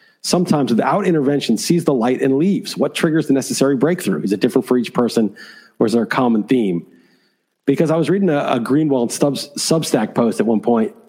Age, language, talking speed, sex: 40-59, English, 200 wpm, male